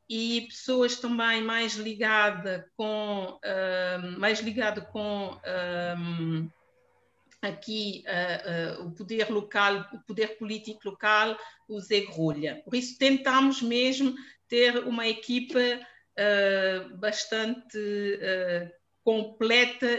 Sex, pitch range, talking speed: female, 200-260 Hz, 105 wpm